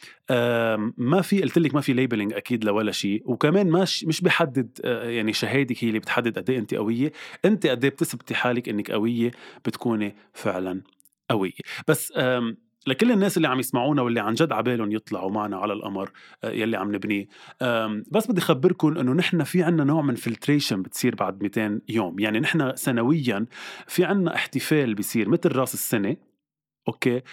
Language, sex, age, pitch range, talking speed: Arabic, male, 20-39, 115-170 Hz, 165 wpm